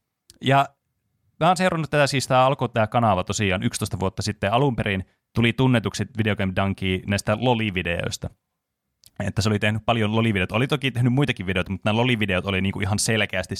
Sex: male